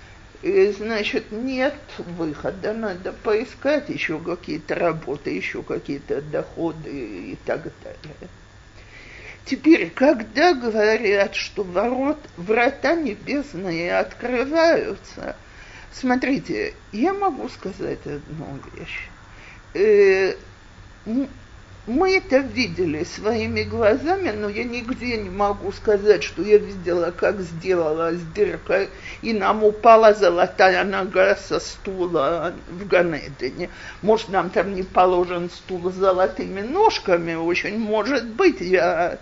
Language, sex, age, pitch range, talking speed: Russian, male, 50-69, 180-260 Hz, 100 wpm